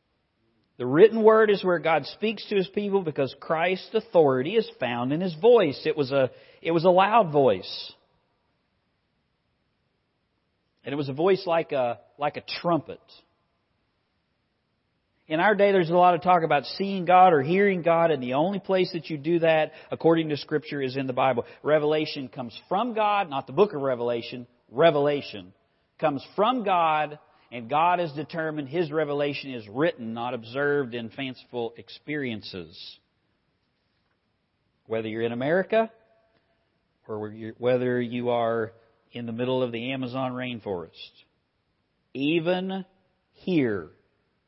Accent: American